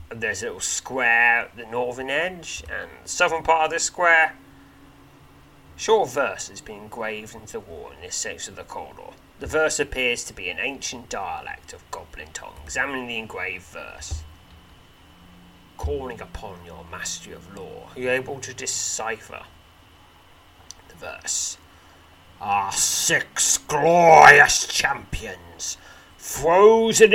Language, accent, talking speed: English, British, 140 wpm